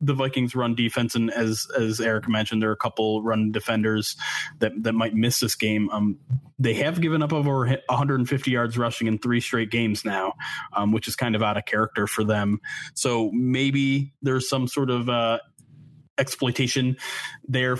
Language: English